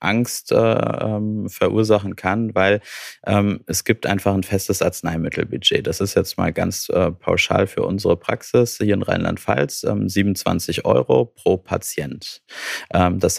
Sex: male